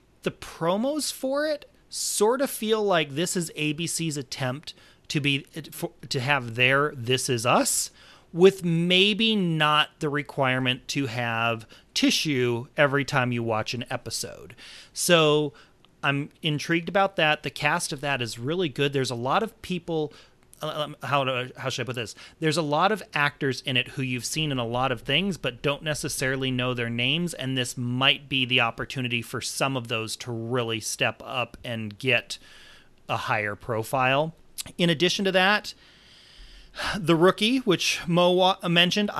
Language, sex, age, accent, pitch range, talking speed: English, male, 30-49, American, 125-165 Hz, 165 wpm